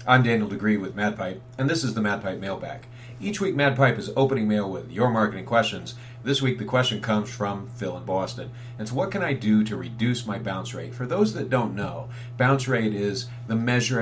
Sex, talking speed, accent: male, 215 wpm, American